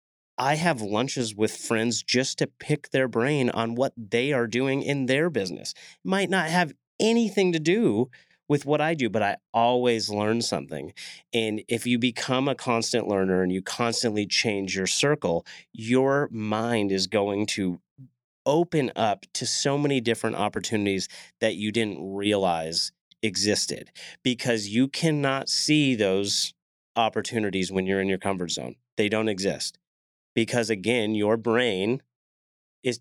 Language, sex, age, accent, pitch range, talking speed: English, male, 30-49, American, 100-125 Hz, 150 wpm